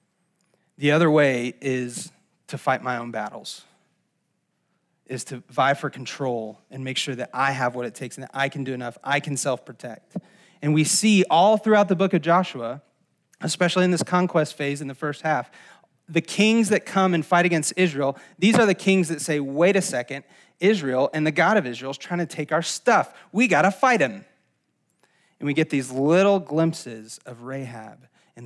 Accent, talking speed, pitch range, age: American, 195 wpm, 130-175 Hz, 30-49